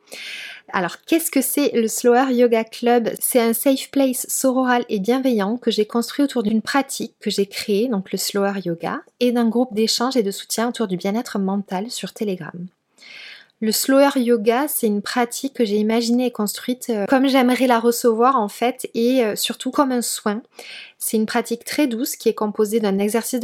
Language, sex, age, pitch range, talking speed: French, female, 20-39, 210-245 Hz, 185 wpm